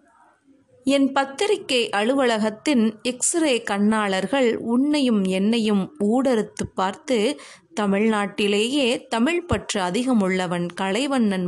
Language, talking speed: Tamil, 70 wpm